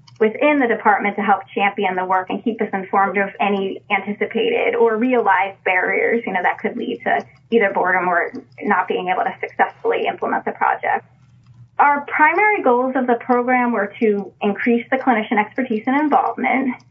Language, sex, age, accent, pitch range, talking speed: English, female, 20-39, American, 200-255 Hz, 175 wpm